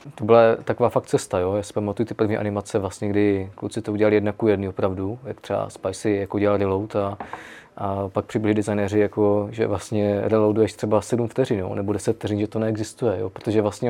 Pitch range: 100-115 Hz